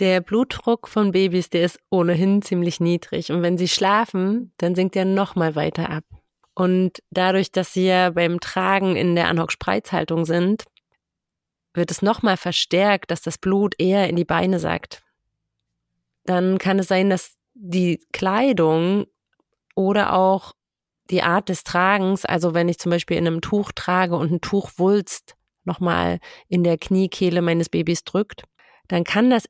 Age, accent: 30-49, German